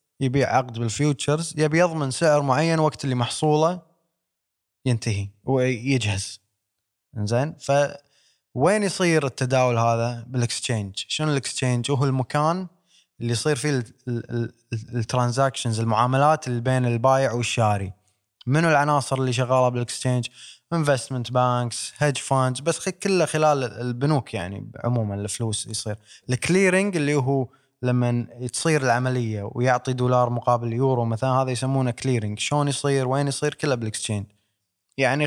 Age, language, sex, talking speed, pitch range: 20-39, Arabic, male, 115 wpm, 115-145 Hz